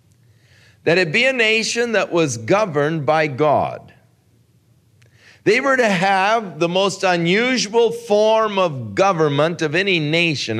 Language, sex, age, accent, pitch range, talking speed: English, male, 50-69, American, 125-205 Hz, 130 wpm